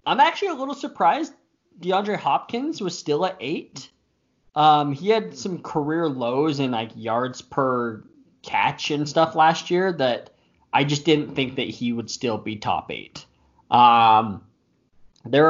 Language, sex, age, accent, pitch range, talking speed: English, male, 20-39, American, 115-145 Hz, 155 wpm